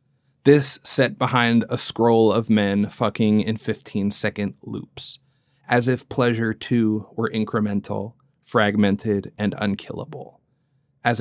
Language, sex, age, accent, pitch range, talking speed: English, male, 30-49, American, 110-140 Hz, 110 wpm